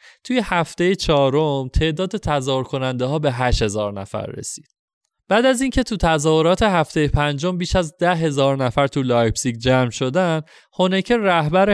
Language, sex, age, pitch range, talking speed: Persian, male, 20-39, 120-160 Hz, 155 wpm